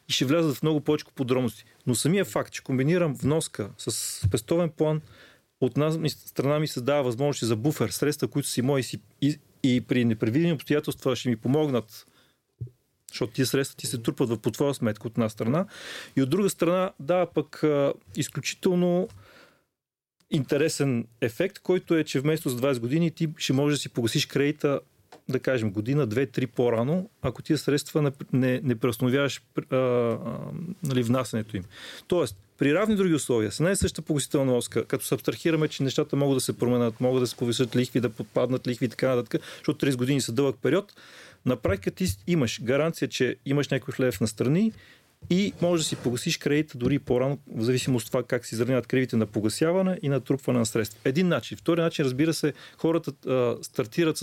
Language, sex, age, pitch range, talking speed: Bulgarian, male, 40-59, 125-155 Hz, 180 wpm